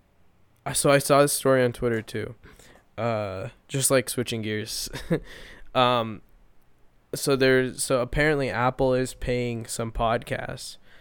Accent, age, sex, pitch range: American, 10-29, male, 120-150 Hz